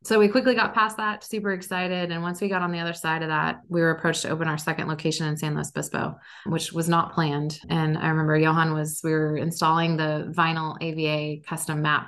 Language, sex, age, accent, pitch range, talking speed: English, female, 20-39, American, 150-170 Hz, 235 wpm